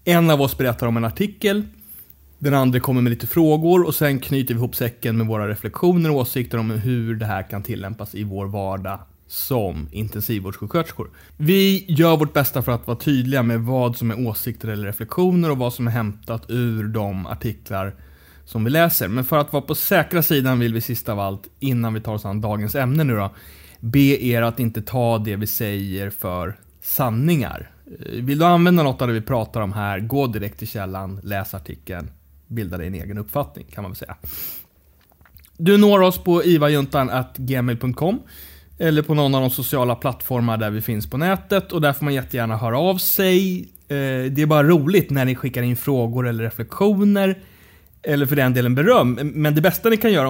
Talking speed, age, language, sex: 195 wpm, 30-49, English, male